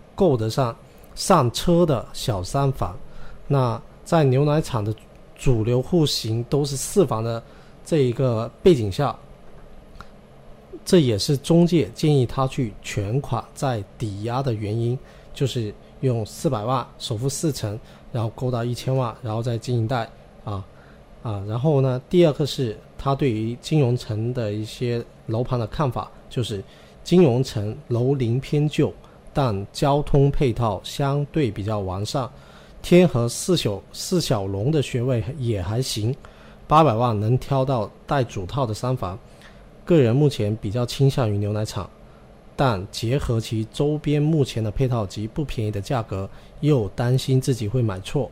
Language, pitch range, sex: Chinese, 110-140 Hz, male